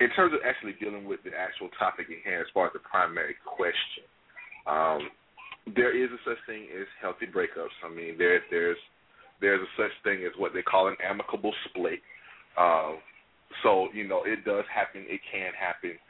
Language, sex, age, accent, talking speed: English, male, 30-49, American, 190 wpm